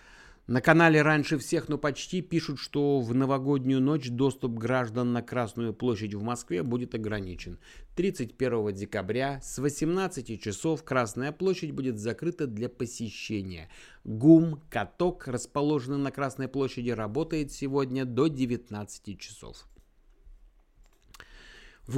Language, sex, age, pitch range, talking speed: Russian, male, 30-49, 115-145 Hz, 115 wpm